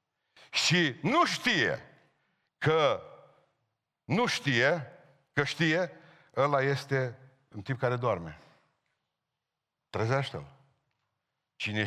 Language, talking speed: Romanian, 80 wpm